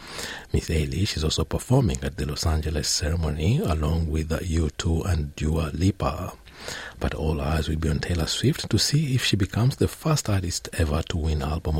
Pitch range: 75-95 Hz